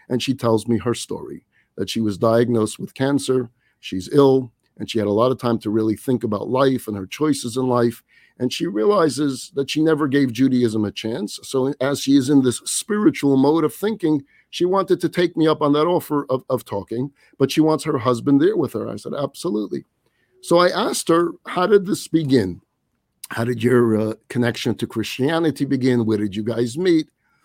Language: English